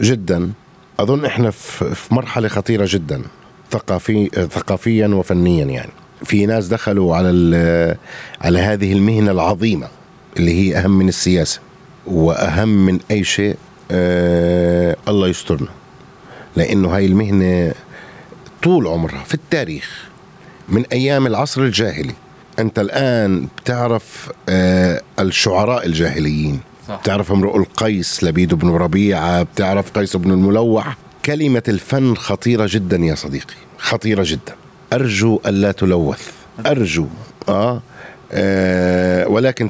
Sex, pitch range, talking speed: male, 90-110 Hz, 110 wpm